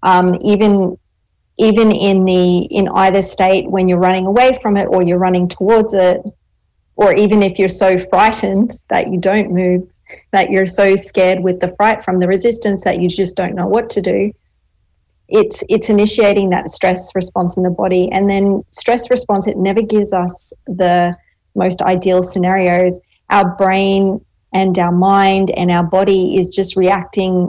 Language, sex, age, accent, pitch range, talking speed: English, female, 30-49, Australian, 185-210 Hz, 170 wpm